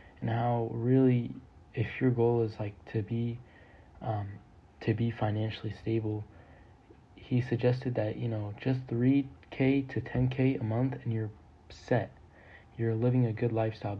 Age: 20-39